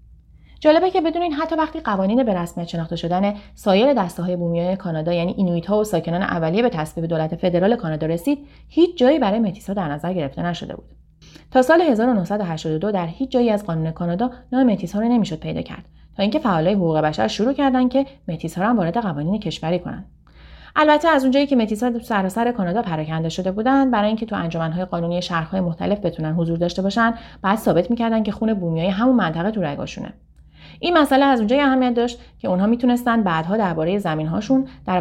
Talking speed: 195 wpm